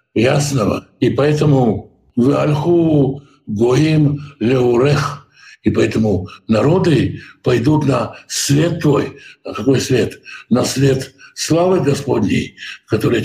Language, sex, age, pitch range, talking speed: Russian, male, 60-79, 125-150 Hz, 80 wpm